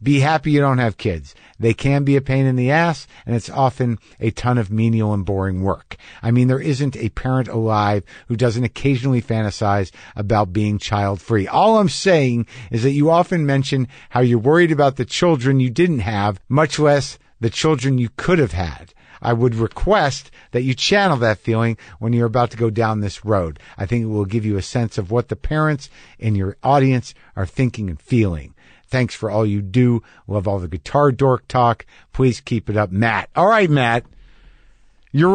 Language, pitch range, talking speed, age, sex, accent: English, 105-135 Hz, 200 wpm, 50-69, male, American